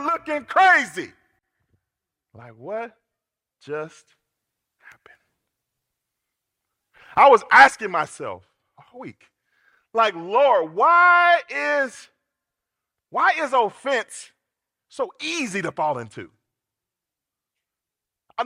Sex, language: male, English